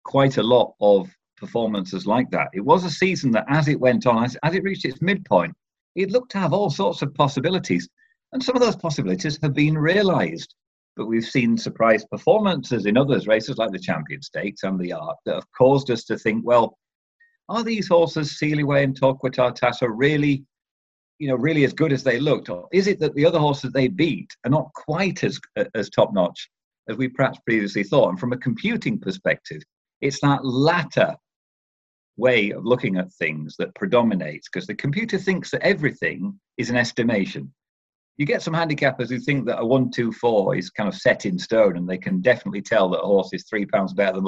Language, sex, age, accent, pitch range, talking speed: English, male, 50-69, British, 115-155 Hz, 205 wpm